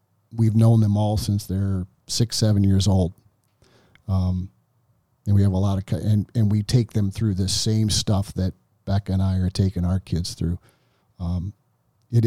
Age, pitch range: 50-69, 95-115 Hz